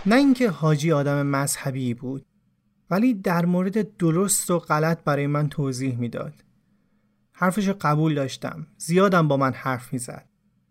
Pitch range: 150-205 Hz